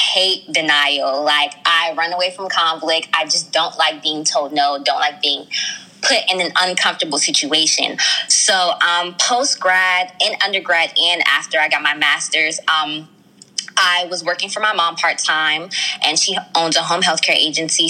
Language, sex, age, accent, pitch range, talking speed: English, female, 20-39, American, 155-180 Hz, 170 wpm